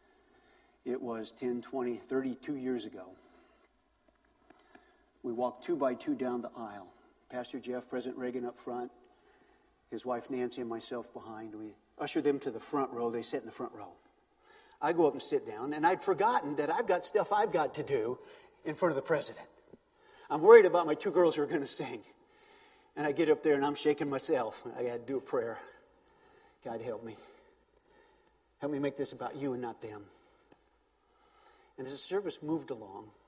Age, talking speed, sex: 50-69, 190 wpm, male